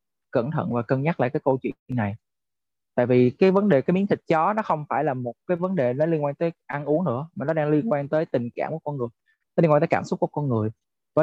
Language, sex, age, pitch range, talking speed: Vietnamese, male, 20-39, 125-160 Hz, 295 wpm